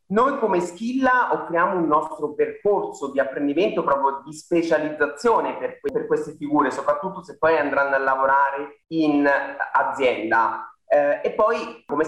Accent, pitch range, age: native, 130-210 Hz, 30-49